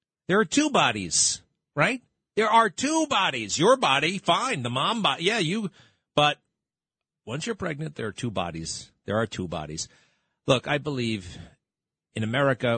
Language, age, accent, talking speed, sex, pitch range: English, 40-59, American, 160 wpm, male, 95-145 Hz